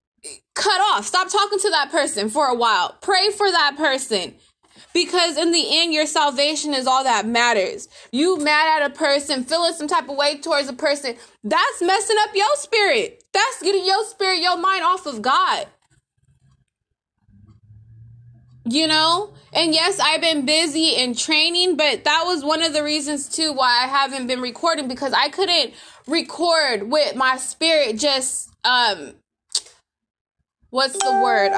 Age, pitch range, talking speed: 20-39, 250-335 Hz, 160 wpm